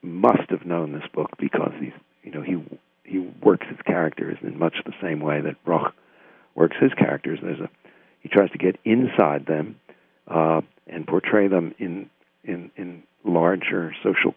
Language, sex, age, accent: English, male, 60-79, American